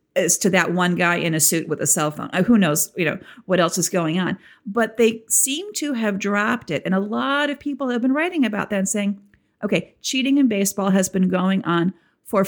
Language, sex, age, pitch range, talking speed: English, female, 50-69, 180-235 Hz, 235 wpm